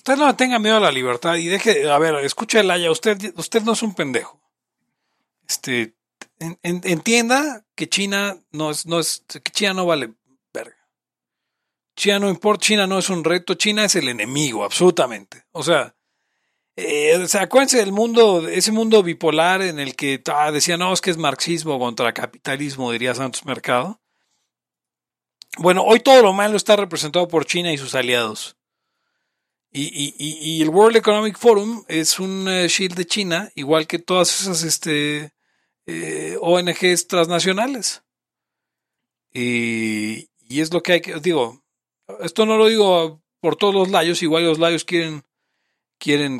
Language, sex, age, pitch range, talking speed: Spanish, male, 40-59, 145-200 Hz, 160 wpm